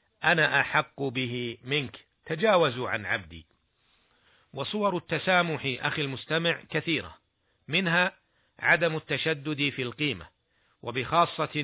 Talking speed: 95 wpm